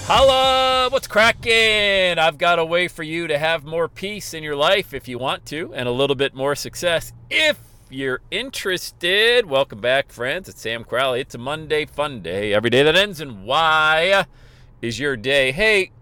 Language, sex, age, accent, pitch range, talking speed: English, male, 40-59, American, 115-170 Hz, 185 wpm